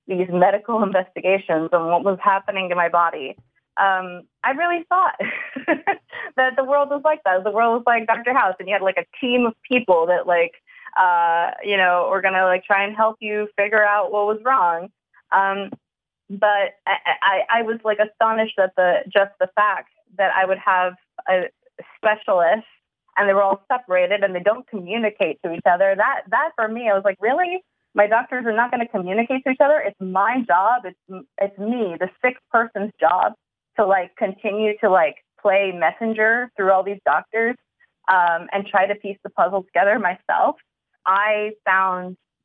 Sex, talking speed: female, 190 wpm